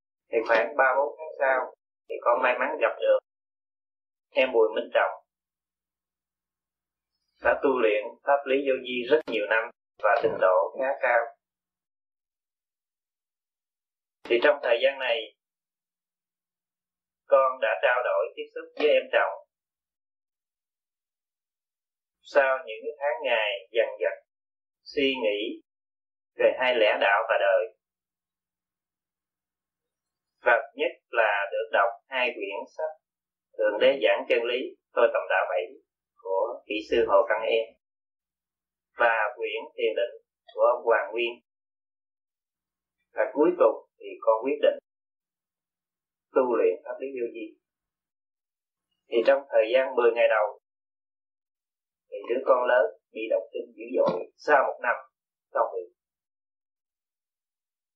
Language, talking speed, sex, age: Vietnamese, 125 wpm, male, 30-49